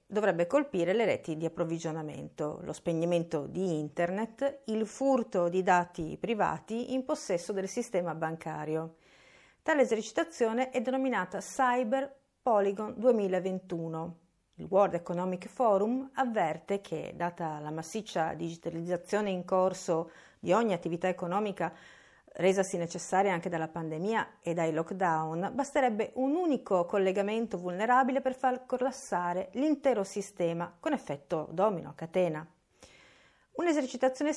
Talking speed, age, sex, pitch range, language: 115 wpm, 40-59, female, 165-230 Hz, Italian